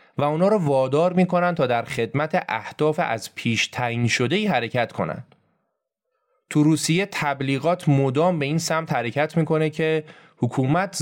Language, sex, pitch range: Persian, male, 120-170 Hz